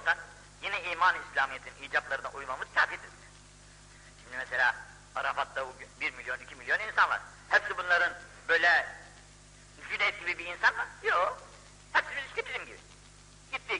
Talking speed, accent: 125 wpm, native